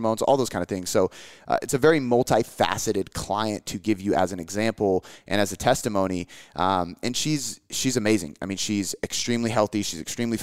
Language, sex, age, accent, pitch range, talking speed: English, male, 30-49, American, 100-130 Hz, 195 wpm